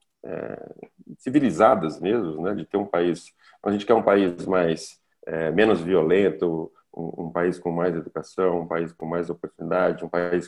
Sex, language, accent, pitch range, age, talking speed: male, Portuguese, Brazilian, 85-105 Hz, 40-59, 170 wpm